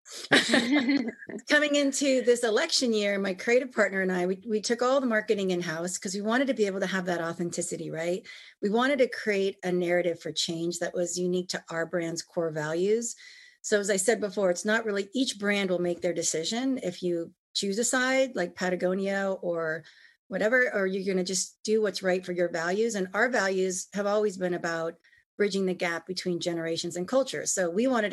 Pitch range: 180-225 Hz